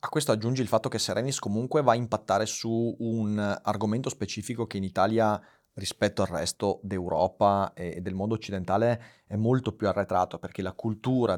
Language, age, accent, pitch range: Italian, 30-49, native, 95-115 Hz